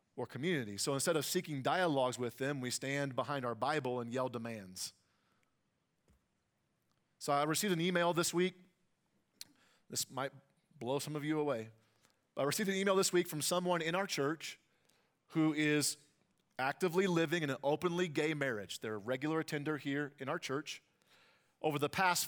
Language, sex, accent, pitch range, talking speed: English, male, American, 130-170 Hz, 165 wpm